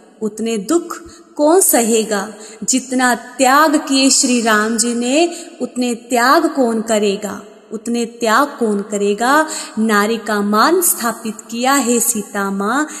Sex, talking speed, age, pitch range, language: female, 125 wpm, 20-39, 215-285 Hz, Hindi